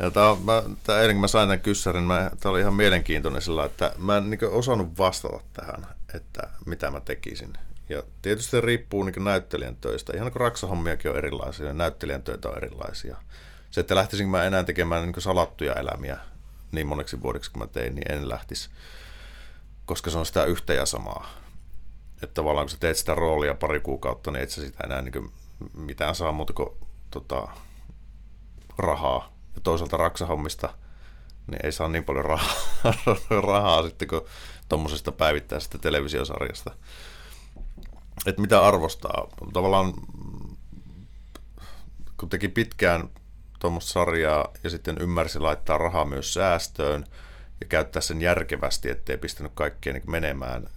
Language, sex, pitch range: Finnish, male, 75-95 Hz